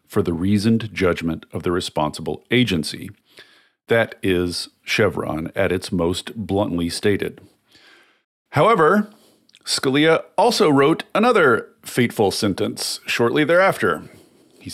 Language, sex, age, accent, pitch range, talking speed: English, male, 40-59, American, 100-135 Hz, 105 wpm